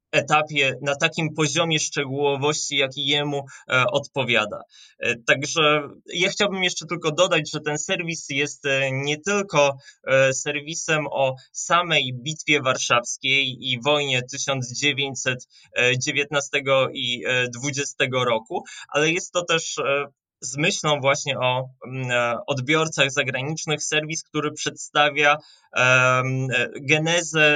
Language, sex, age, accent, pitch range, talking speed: Polish, male, 20-39, native, 135-155 Hz, 110 wpm